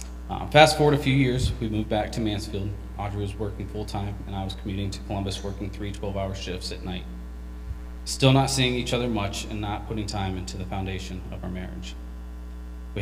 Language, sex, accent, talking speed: English, male, American, 205 wpm